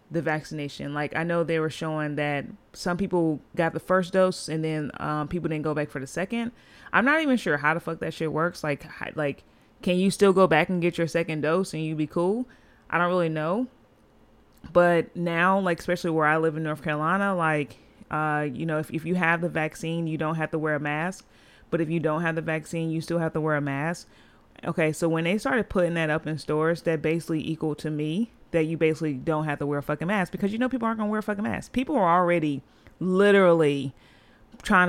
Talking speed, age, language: 235 wpm, 30-49, English